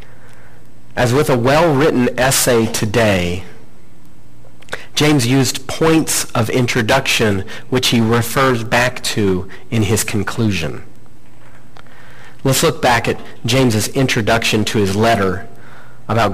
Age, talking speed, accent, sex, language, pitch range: 40-59, 105 wpm, American, male, English, 95-125 Hz